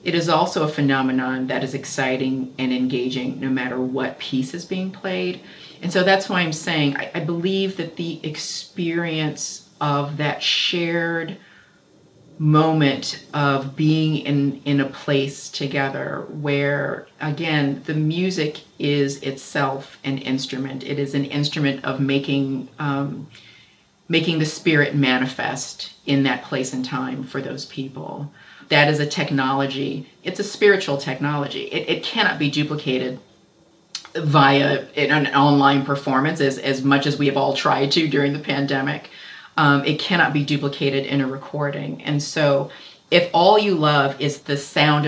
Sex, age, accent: female, 40-59, American